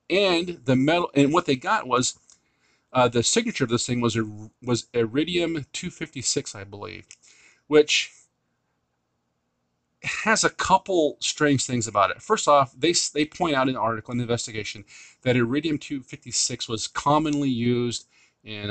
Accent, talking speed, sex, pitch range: American, 165 wpm, male, 120-150 Hz